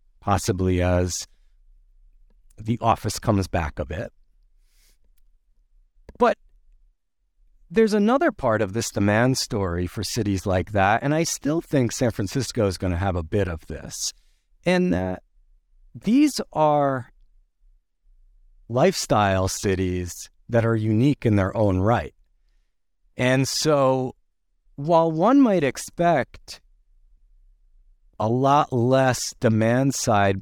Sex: male